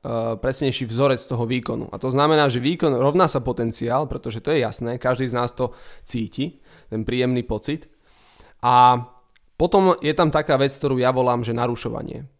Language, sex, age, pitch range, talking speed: Slovak, male, 20-39, 120-135 Hz, 170 wpm